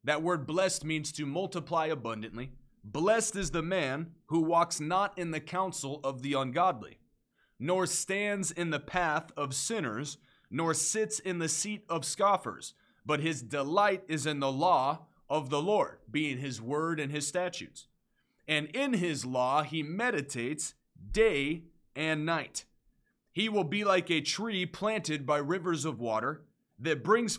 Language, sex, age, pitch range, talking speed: English, male, 30-49, 145-190 Hz, 160 wpm